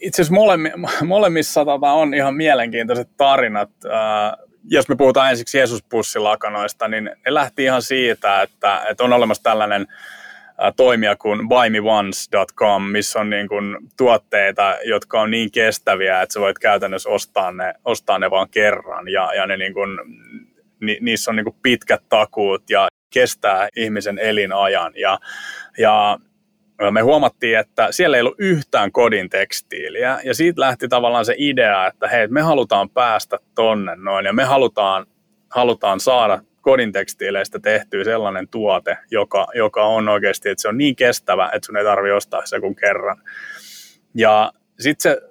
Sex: male